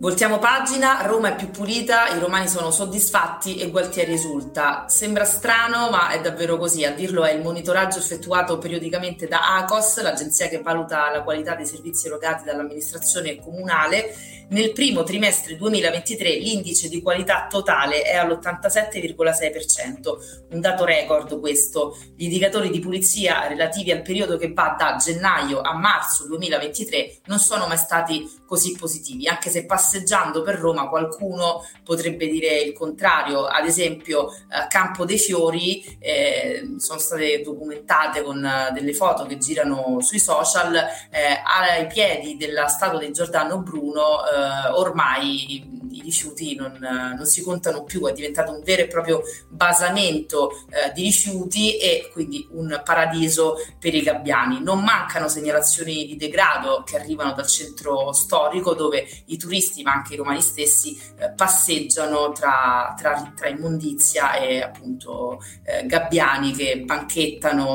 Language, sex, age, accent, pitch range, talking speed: Italian, female, 30-49, native, 150-195 Hz, 145 wpm